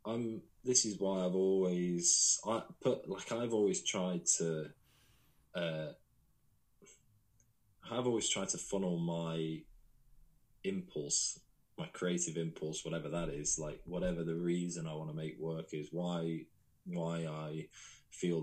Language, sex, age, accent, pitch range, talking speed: English, male, 20-39, British, 80-95 Hz, 135 wpm